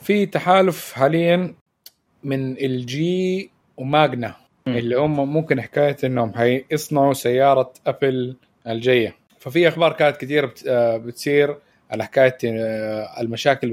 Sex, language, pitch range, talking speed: male, Arabic, 120-140 Hz, 100 wpm